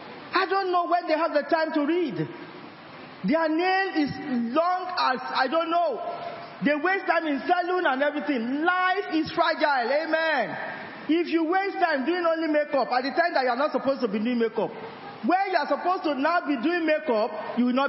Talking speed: 200 wpm